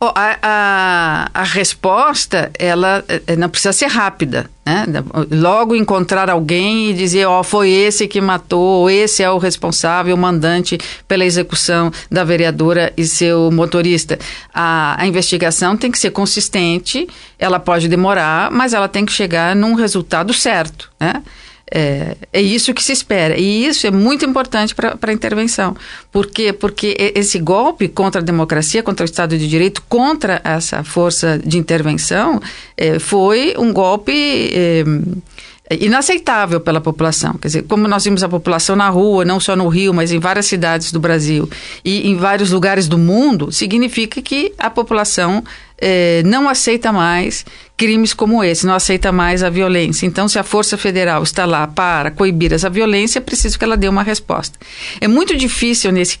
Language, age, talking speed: Portuguese, 50-69, 165 wpm